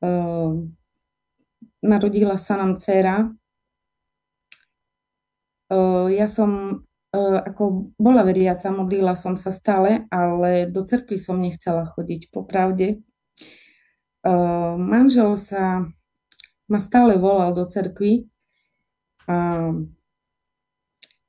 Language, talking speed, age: Slovak, 95 wpm, 30-49